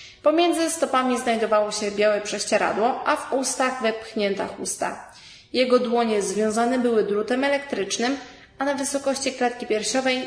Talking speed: 130 wpm